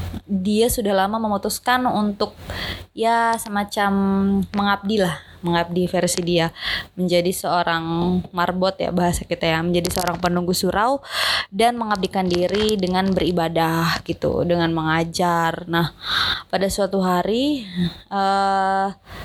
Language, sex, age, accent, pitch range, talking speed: Indonesian, female, 20-39, native, 175-200 Hz, 110 wpm